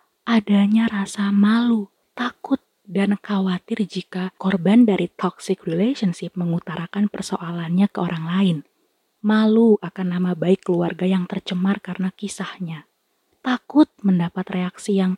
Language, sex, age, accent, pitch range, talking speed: Indonesian, female, 20-39, native, 180-225 Hz, 115 wpm